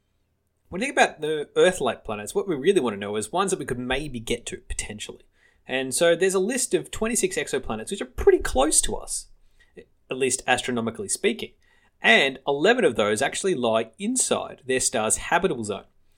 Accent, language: Australian, English